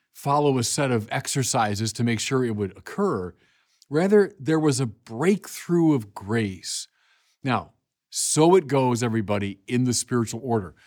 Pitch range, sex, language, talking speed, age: 110-150 Hz, male, English, 150 wpm, 50-69